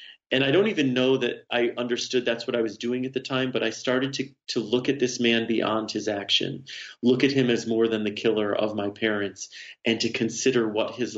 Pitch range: 110-130 Hz